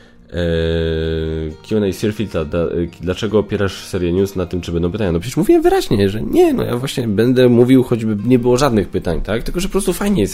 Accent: native